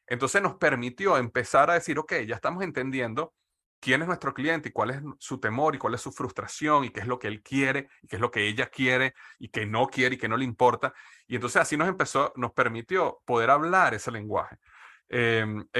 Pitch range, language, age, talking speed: 110-135 Hz, Spanish, 30-49, 235 wpm